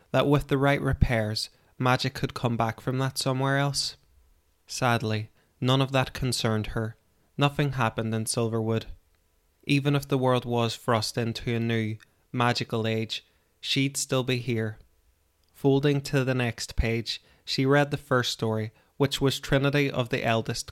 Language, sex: English, male